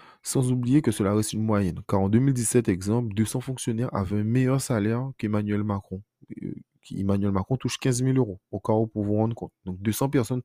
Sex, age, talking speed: male, 20-39, 200 wpm